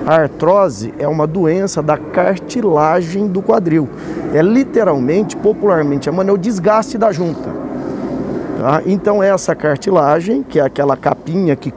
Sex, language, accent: male, Portuguese, Brazilian